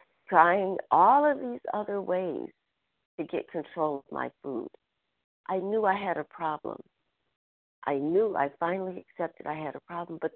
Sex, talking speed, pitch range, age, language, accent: female, 160 wpm, 210-305 Hz, 50-69, English, American